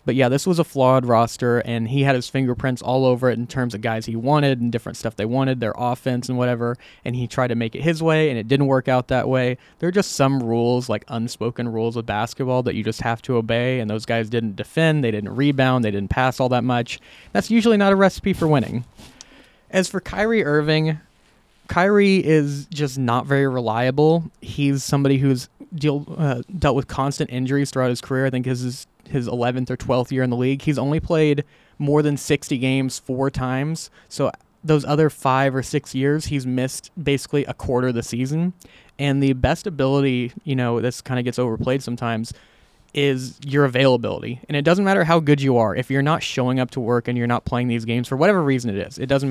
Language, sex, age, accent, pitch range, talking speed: English, male, 20-39, American, 120-145 Hz, 225 wpm